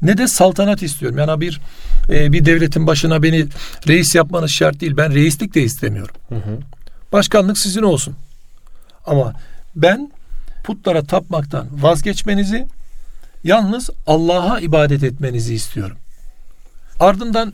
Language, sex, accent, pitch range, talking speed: Turkish, male, native, 140-185 Hz, 110 wpm